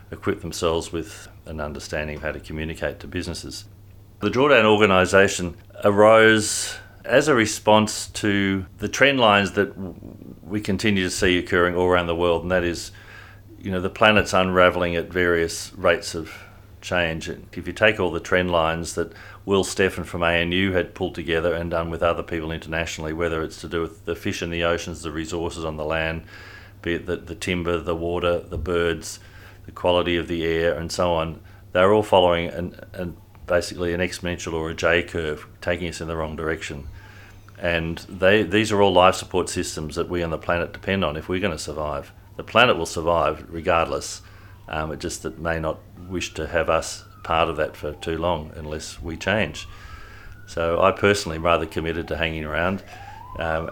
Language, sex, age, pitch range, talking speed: English, male, 40-59, 85-100 Hz, 185 wpm